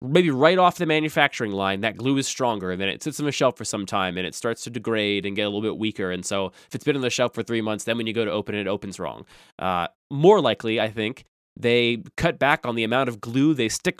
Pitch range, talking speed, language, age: 115-160 Hz, 285 wpm, English, 20-39